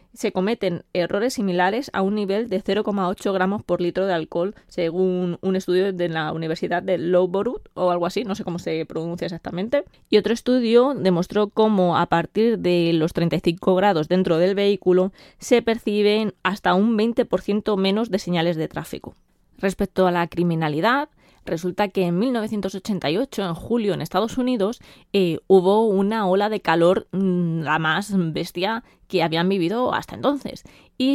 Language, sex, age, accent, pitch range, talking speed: Spanish, female, 20-39, Spanish, 175-215 Hz, 160 wpm